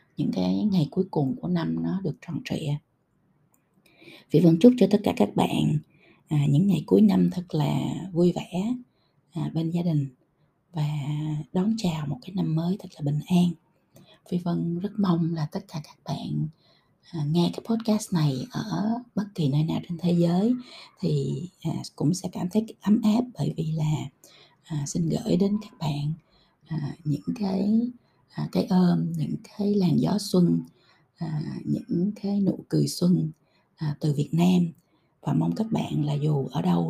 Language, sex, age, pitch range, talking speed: Vietnamese, female, 20-39, 150-185 Hz, 165 wpm